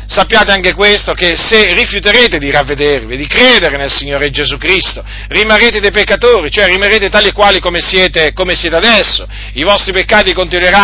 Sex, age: male, 40-59